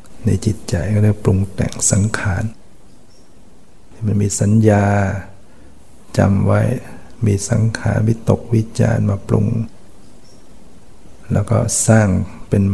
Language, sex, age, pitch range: Thai, male, 60-79, 95-115 Hz